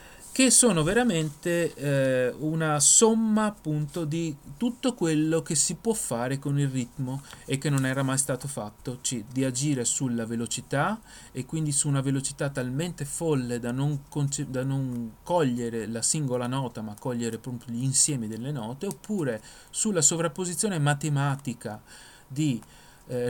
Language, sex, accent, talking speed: Italian, male, native, 145 wpm